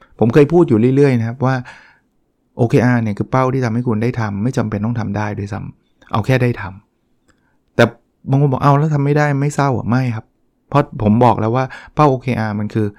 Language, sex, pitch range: Thai, male, 105-130 Hz